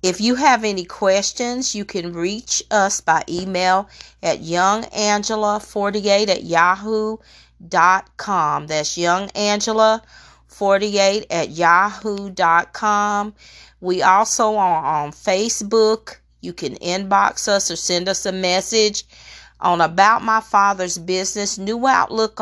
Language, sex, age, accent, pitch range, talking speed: English, female, 40-59, American, 180-215 Hz, 105 wpm